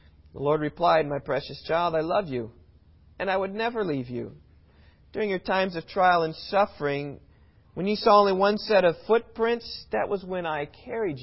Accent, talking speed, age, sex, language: American, 185 wpm, 40-59, male, English